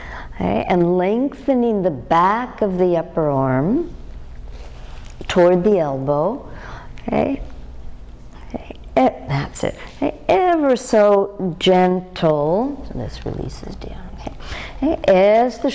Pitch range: 135-185 Hz